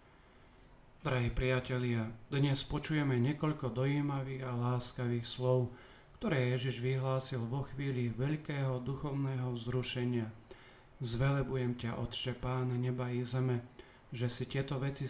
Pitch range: 120-135 Hz